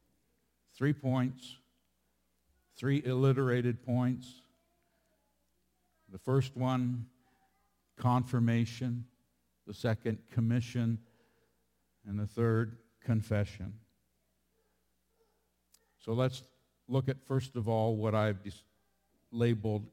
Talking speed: 80 wpm